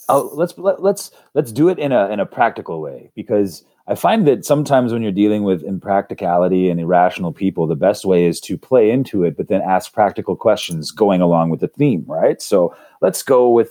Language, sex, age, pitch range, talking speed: English, male, 30-49, 90-145 Hz, 205 wpm